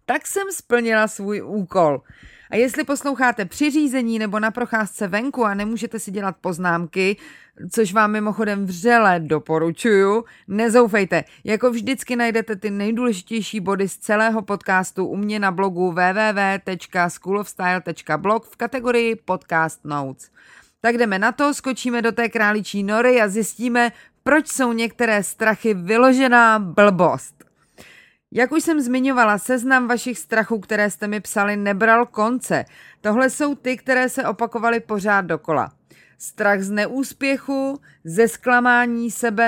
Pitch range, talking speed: 195-240 Hz, 130 wpm